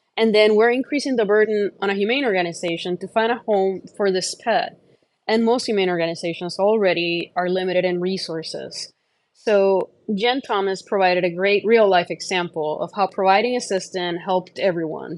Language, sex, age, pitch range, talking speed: English, female, 20-39, 180-225 Hz, 160 wpm